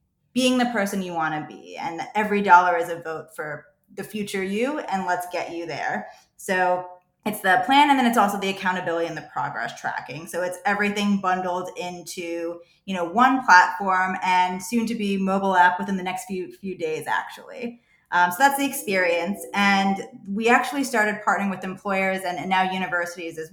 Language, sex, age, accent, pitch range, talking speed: English, female, 20-39, American, 170-210 Hz, 190 wpm